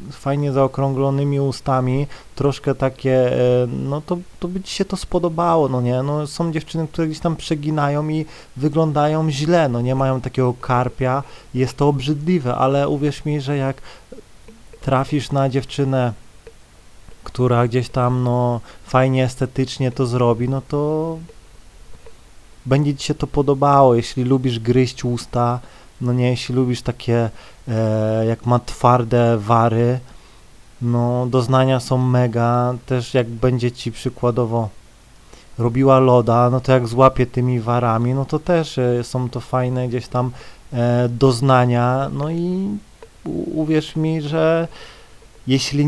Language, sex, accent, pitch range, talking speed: Polish, male, native, 125-150 Hz, 135 wpm